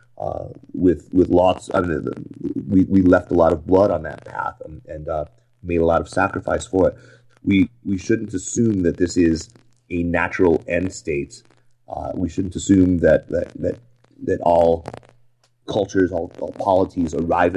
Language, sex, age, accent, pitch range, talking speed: English, male, 30-49, American, 85-120 Hz, 175 wpm